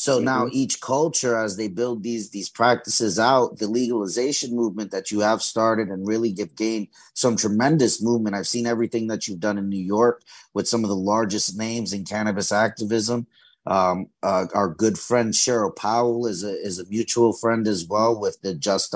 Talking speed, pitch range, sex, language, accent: 195 wpm, 100-115 Hz, male, English, American